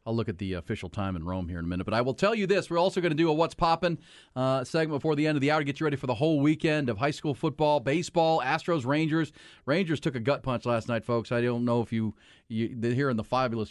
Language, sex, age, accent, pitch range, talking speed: English, male, 40-59, American, 115-150 Hz, 295 wpm